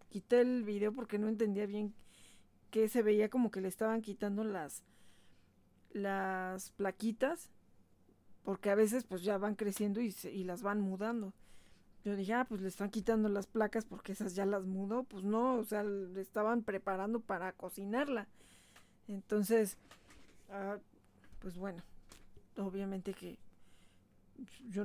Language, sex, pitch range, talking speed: Spanish, female, 190-220 Hz, 145 wpm